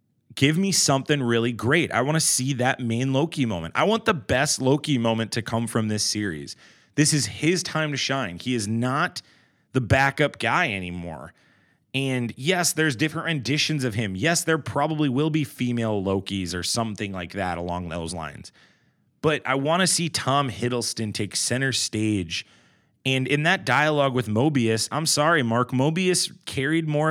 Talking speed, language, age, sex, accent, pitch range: 175 wpm, English, 30-49, male, American, 105-145 Hz